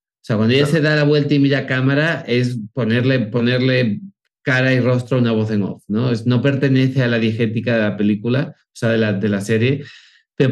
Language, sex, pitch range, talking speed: Spanish, male, 115-145 Hz, 235 wpm